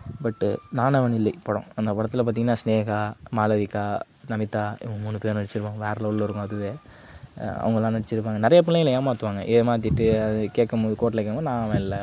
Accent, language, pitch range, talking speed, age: native, Tamil, 110-130 Hz, 140 wpm, 20-39